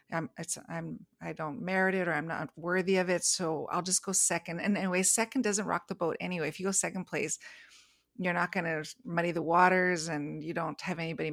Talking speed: 220 wpm